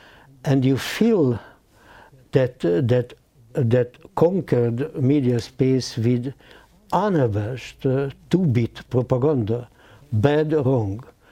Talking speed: 95 wpm